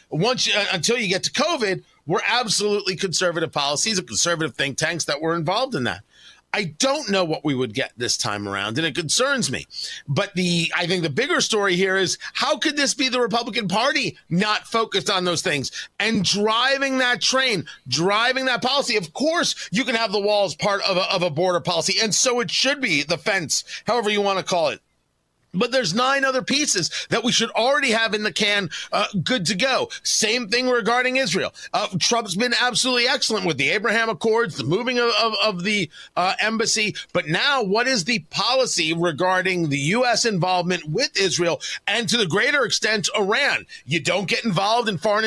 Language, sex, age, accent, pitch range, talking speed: English, male, 40-59, American, 180-245 Hz, 200 wpm